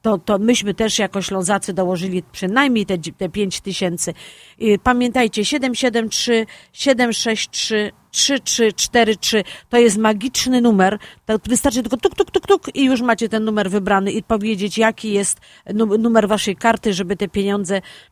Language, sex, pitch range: Polish, female, 200-235 Hz